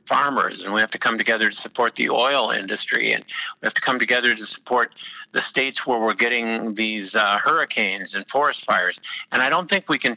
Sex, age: male, 50-69